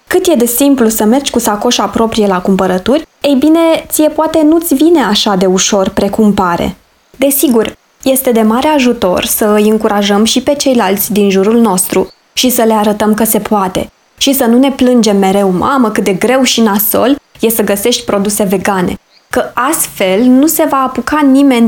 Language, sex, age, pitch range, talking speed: Romanian, female, 20-39, 215-285 Hz, 185 wpm